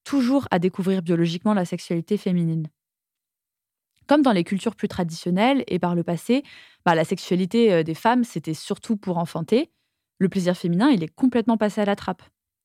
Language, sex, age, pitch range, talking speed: French, female, 20-39, 170-220 Hz, 170 wpm